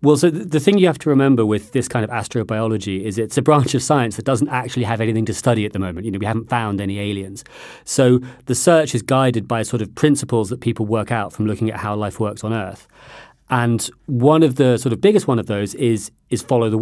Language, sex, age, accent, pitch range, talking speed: English, male, 40-59, British, 110-130 Hz, 255 wpm